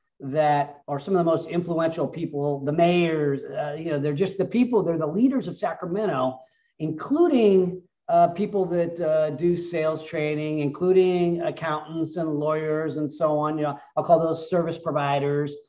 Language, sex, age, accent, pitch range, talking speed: English, male, 40-59, American, 145-185 Hz, 170 wpm